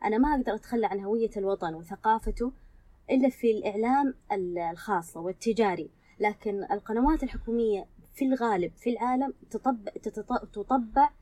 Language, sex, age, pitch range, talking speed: Arabic, female, 20-39, 200-245 Hz, 110 wpm